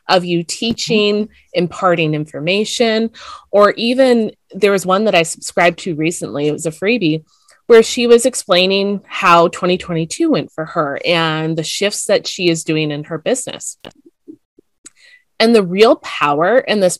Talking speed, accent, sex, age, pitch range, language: 155 wpm, American, female, 20-39, 165-215 Hz, English